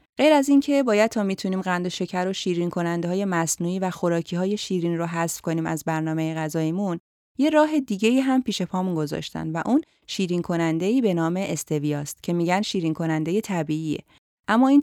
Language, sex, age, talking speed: Persian, female, 30-49, 180 wpm